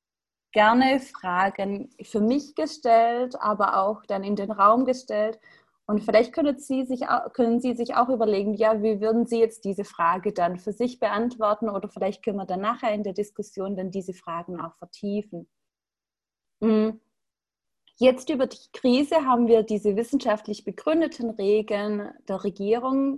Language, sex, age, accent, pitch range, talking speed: German, female, 30-49, German, 200-255 Hz, 150 wpm